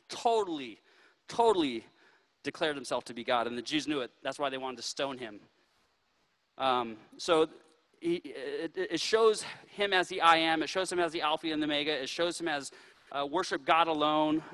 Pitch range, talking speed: 135-185 Hz, 190 wpm